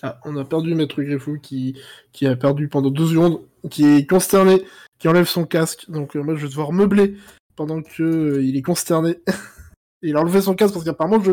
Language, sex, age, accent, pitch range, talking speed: French, male, 20-39, French, 150-200 Hz, 215 wpm